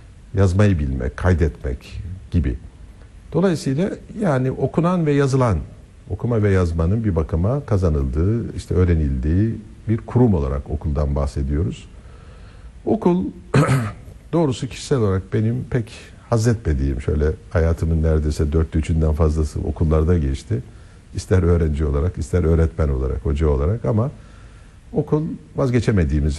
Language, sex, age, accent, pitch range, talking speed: Turkish, male, 60-79, native, 80-115 Hz, 110 wpm